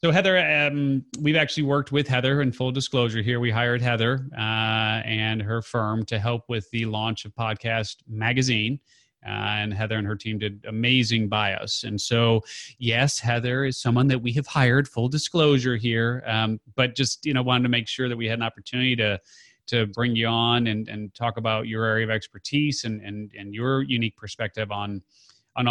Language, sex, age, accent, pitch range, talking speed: English, male, 30-49, American, 110-125 Hz, 200 wpm